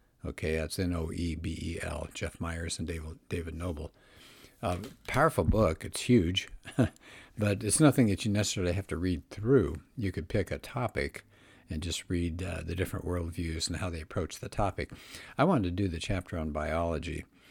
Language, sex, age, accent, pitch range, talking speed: English, male, 60-79, American, 85-100 Hz, 170 wpm